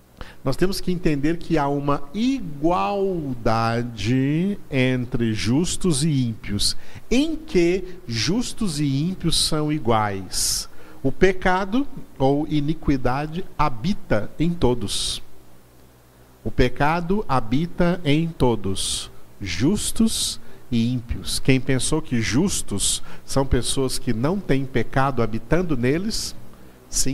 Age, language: 50-69, Portuguese